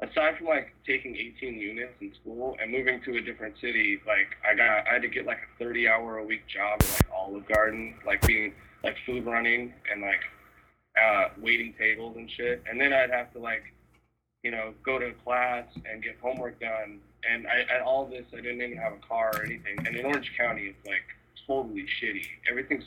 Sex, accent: male, American